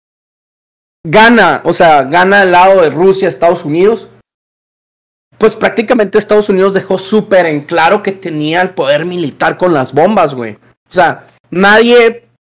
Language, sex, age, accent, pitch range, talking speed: Spanish, male, 30-49, Mexican, 175-225 Hz, 145 wpm